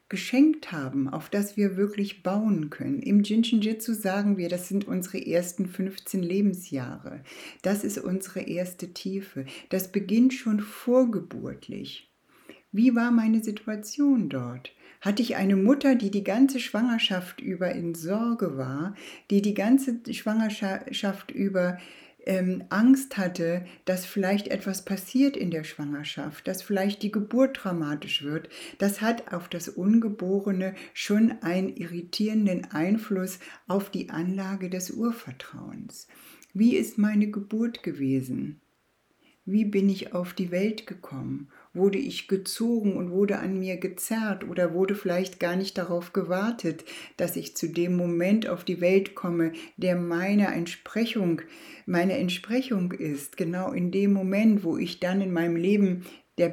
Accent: German